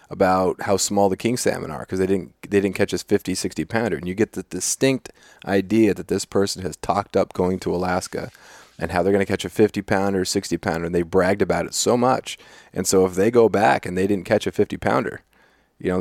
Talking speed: 245 wpm